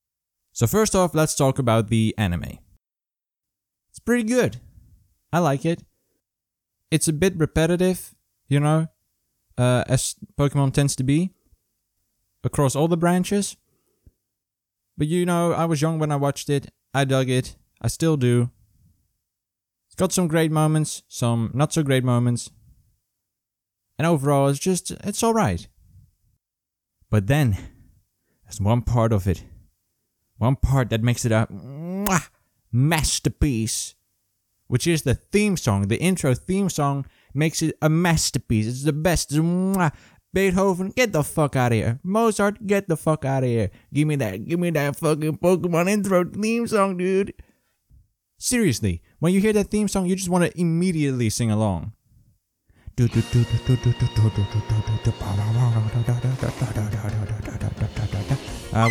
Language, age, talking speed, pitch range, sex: English, 20-39, 135 wpm, 110-165 Hz, male